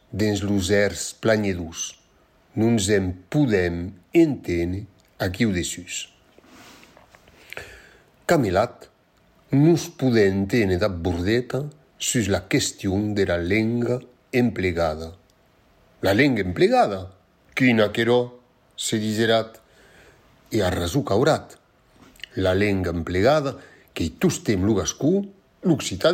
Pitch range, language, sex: 95-125 Hz, French, male